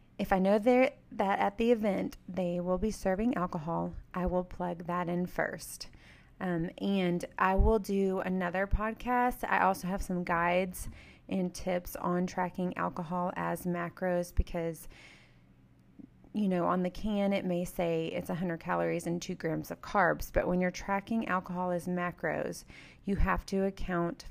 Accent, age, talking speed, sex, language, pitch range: American, 30-49, 160 wpm, female, English, 170-190 Hz